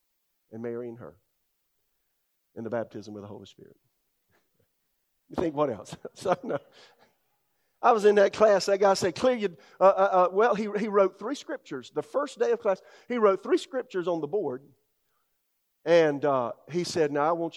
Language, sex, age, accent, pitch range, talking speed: English, male, 50-69, American, 125-165 Hz, 190 wpm